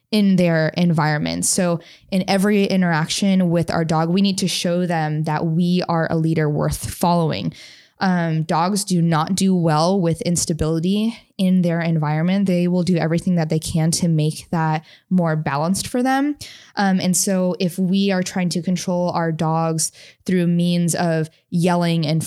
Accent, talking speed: American, 170 wpm